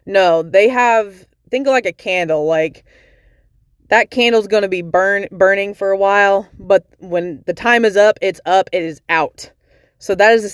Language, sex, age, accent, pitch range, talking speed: English, female, 20-39, American, 180-215 Hz, 195 wpm